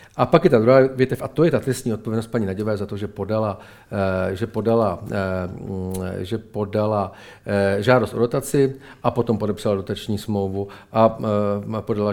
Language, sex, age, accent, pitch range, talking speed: Czech, male, 40-59, native, 105-130 Hz, 160 wpm